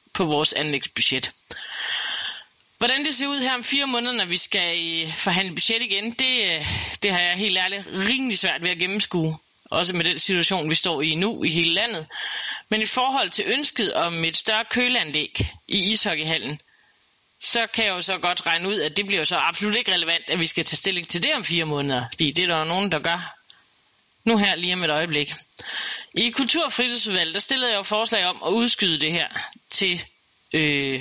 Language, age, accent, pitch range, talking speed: Danish, 30-49, native, 165-225 Hz, 200 wpm